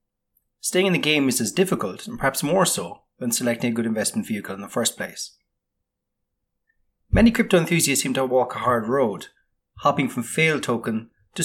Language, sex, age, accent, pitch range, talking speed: English, male, 30-49, Irish, 110-140 Hz, 185 wpm